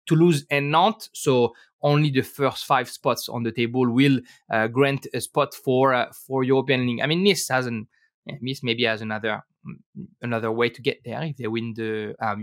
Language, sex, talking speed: English, male, 200 wpm